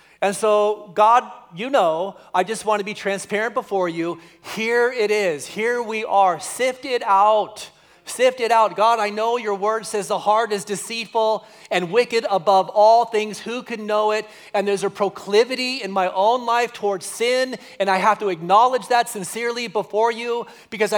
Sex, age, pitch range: male, 30-49, 170-220 Hz